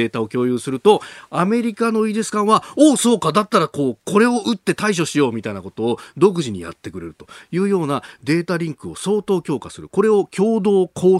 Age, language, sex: 40-59, Japanese, male